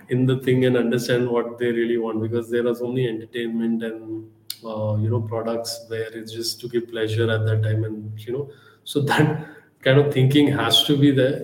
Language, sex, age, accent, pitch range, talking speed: English, male, 20-39, Indian, 115-135 Hz, 210 wpm